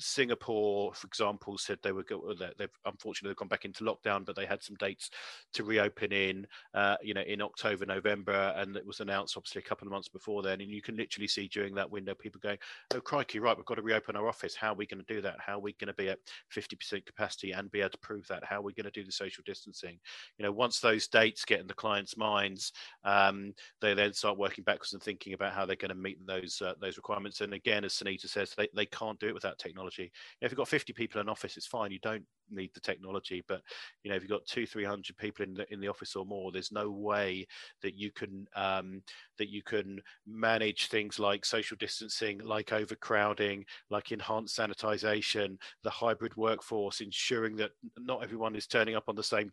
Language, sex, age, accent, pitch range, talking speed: English, male, 40-59, British, 100-105 Hz, 235 wpm